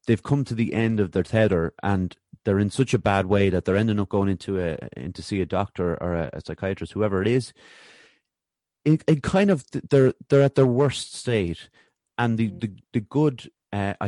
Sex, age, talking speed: male, 30-49, 205 wpm